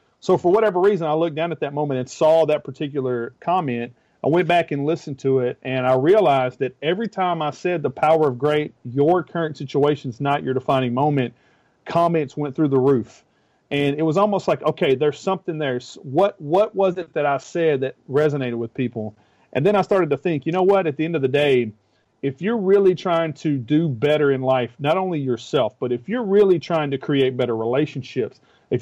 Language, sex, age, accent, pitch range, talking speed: English, male, 40-59, American, 130-165 Hz, 215 wpm